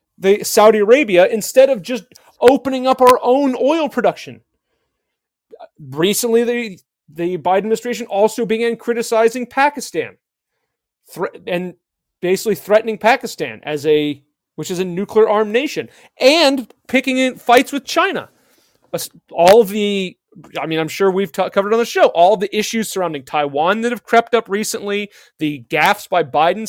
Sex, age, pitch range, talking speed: male, 30-49, 170-230 Hz, 150 wpm